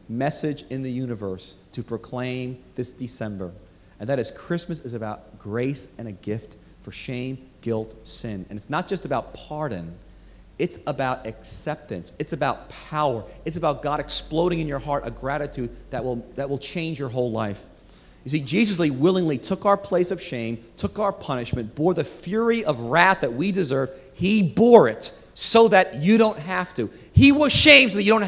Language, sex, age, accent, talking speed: English, male, 40-59, American, 185 wpm